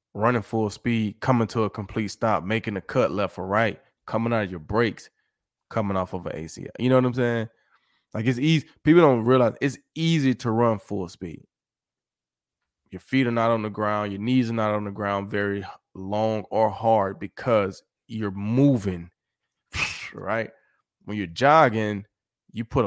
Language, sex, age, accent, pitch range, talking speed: English, male, 20-39, American, 95-115 Hz, 180 wpm